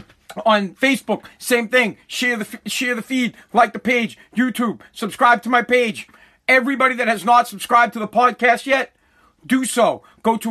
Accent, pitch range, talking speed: American, 220-255 Hz, 170 wpm